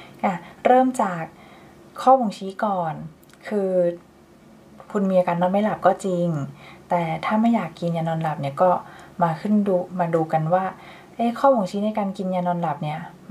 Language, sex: Thai, female